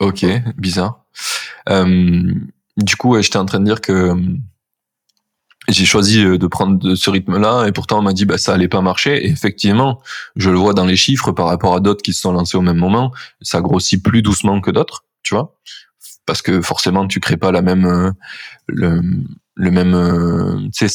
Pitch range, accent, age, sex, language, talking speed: 90-110 Hz, French, 20-39, male, French, 190 wpm